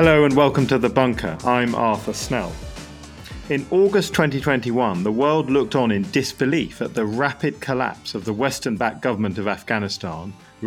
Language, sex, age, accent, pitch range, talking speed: English, male, 40-59, British, 110-140 Hz, 165 wpm